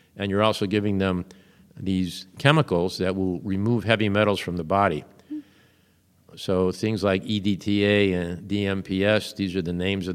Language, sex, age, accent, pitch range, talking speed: English, male, 50-69, American, 90-105 Hz, 155 wpm